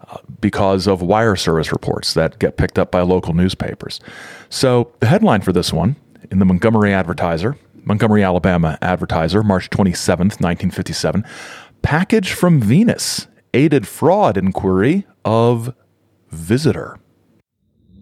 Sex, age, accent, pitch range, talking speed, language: male, 40-59, American, 95-125 Hz, 120 wpm, English